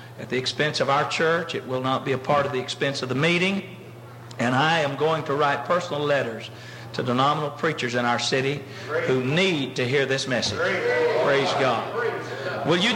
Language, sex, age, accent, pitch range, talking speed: English, male, 60-79, American, 130-180 Hz, 195 wpm